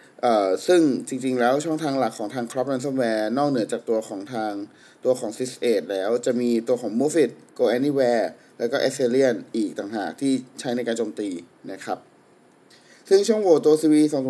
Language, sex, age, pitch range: Thai, male, 20-39, 115-140 Hz